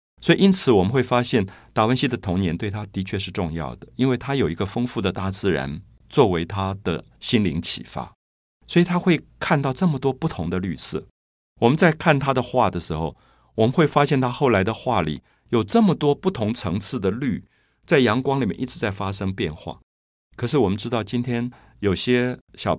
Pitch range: 90-130 Hz